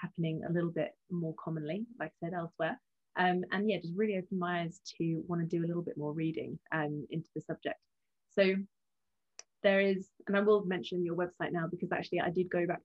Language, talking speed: English, 220 wpm